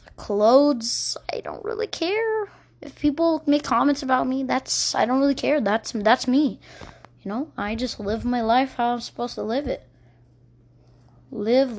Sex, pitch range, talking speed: female, 195-260 Hz, 170 wpm